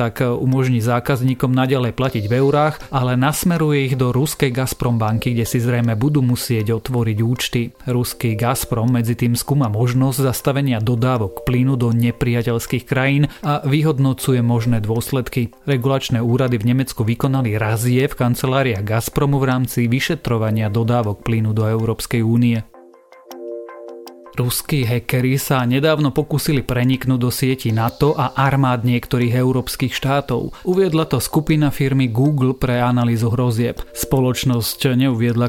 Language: Slovak